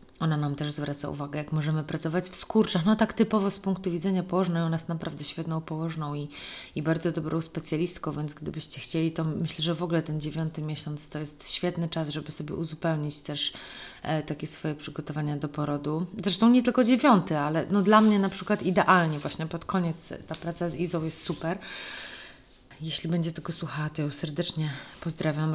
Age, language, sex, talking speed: 30-49, Polish, female, 190 wpm